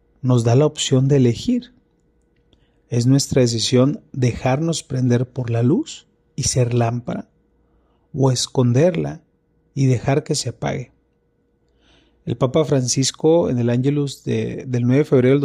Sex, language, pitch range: male, Spanish, 120-145 Hz